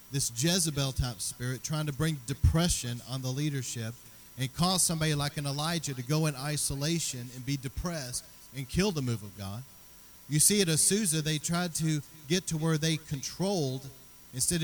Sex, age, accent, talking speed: male, 40-59, American, 170 wpm